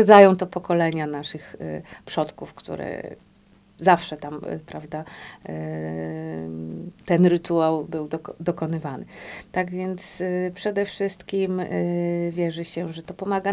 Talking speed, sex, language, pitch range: 100 wpm, female, Polish, 165-195 Hz